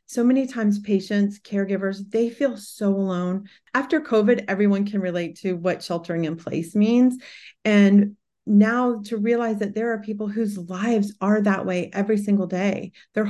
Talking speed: 165 wpm